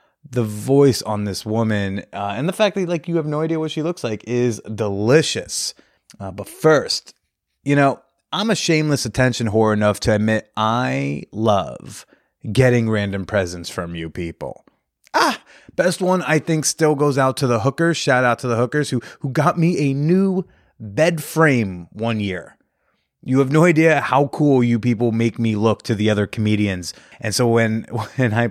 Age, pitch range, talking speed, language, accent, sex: 30-49, 110-150 Hz, 185 wpm, English, American, male